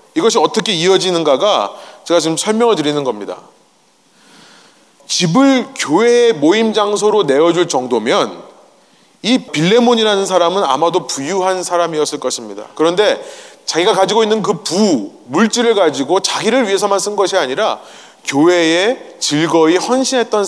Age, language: 30-49, Korean